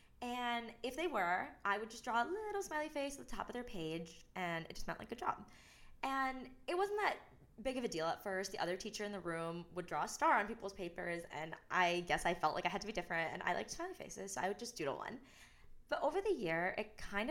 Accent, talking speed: American, 265 wpm